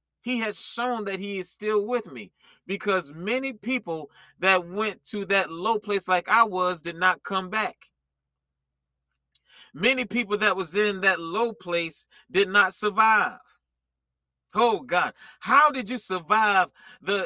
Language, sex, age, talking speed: English, male, 30-49, 150 wpm